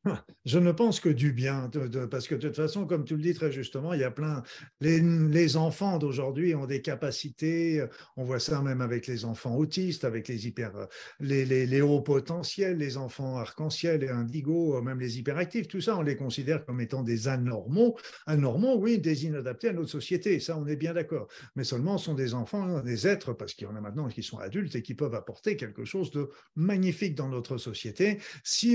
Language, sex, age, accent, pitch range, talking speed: French, male, 50-69, French, 130-175 Hz, 210 wpm